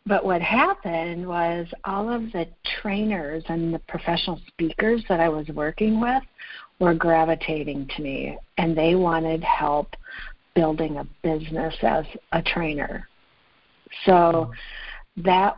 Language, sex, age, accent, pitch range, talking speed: English, female, 50-69, American, 160-190 Hz, 125 wpm